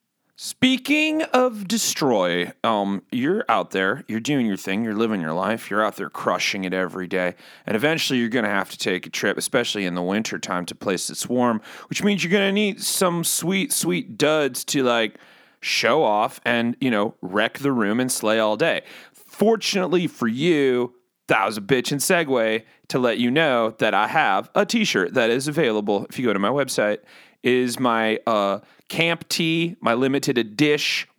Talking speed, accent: 190 wpm, American